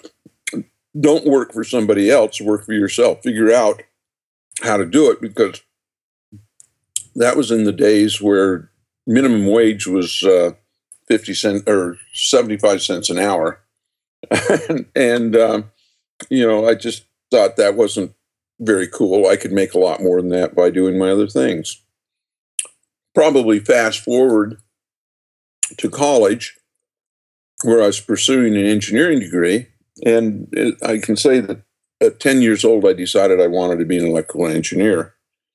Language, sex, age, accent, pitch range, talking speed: English, male, 50-69, American, 95-115 Hz, 145 wpm